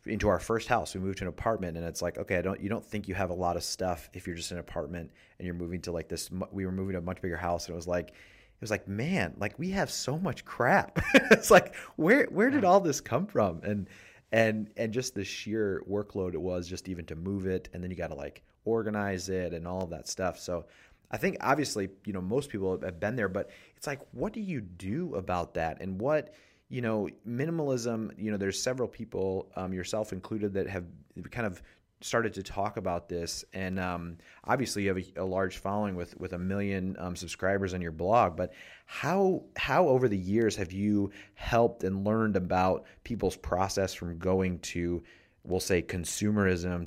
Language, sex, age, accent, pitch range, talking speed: English, male, 30-49, American, 90-105 Hz, 220 wpm